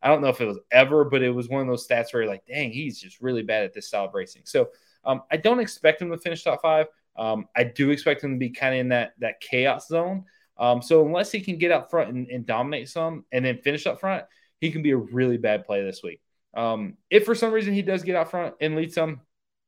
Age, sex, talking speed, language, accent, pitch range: 20-39, male, 275 wpm, English, American, 125-155 Hz